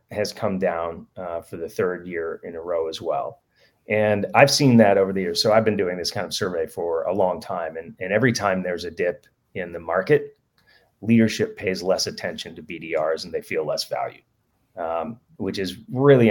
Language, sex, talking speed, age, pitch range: English, male, 210 wpm, 30-49, 105-125 Hz